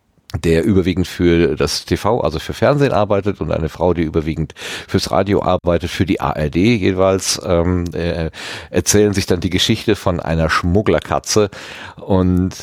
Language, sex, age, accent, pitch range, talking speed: German, male, 40-59, German, 85-110 Hz, 145 wpm